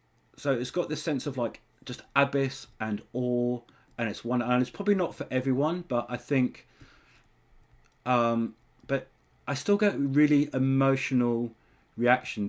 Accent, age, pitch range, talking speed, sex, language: British, 40-59, 110-130 Hz, 150 wpm, male, English